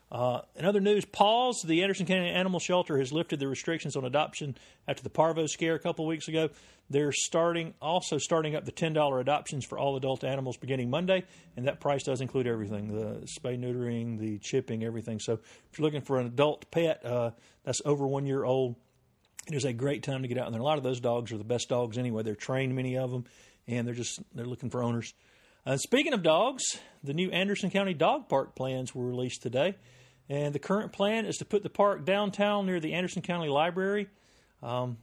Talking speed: 215 wpm